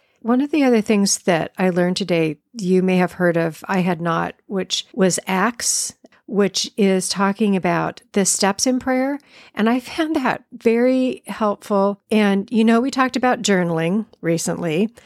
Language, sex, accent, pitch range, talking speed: English, female, American, 190-225 Hz, 165 wpm